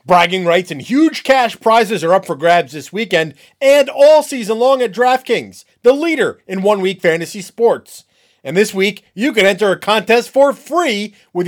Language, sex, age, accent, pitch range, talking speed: English, male, 30-49, American, 170-230 Hz, 185 wpm